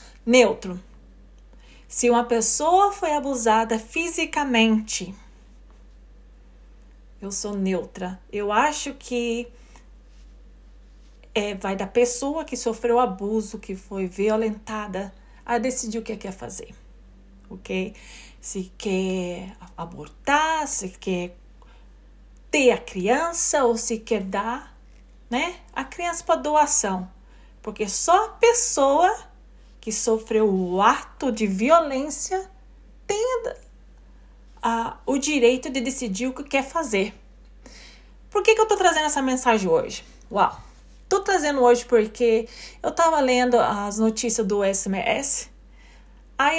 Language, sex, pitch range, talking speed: Portuguese, female, 200-275 Hz, 115 wpm